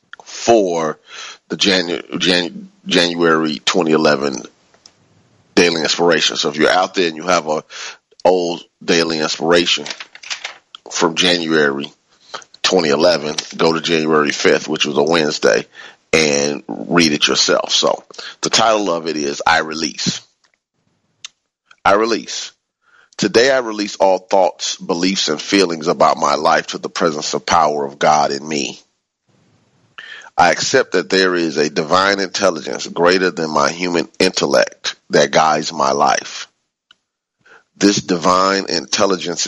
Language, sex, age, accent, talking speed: English, male, 30-49, American, 125 wpm